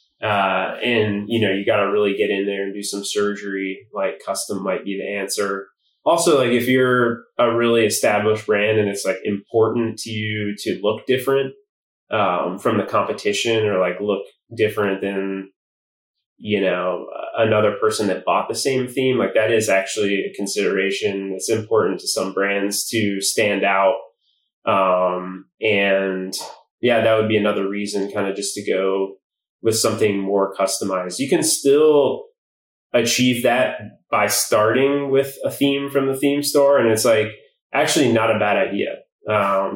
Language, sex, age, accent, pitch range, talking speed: English, male, 20-39, American, 100-115 Hz, 165 wpm